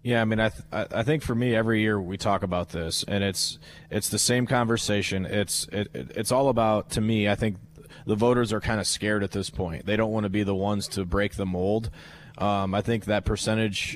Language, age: English, 20-39